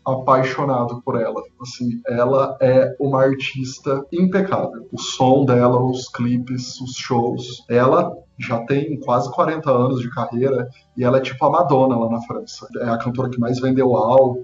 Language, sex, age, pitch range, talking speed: Portuguese, male, 20-39, 130-150 Hz, 165 wpm